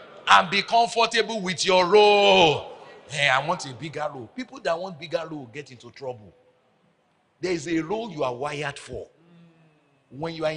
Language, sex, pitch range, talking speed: English, male, 120-165 Hz, 175 wpm